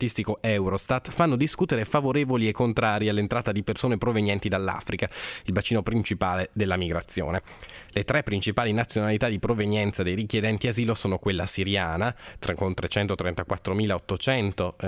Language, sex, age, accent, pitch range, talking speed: Italian, male, 20-39, native, 95-120 Hz, 125 wpm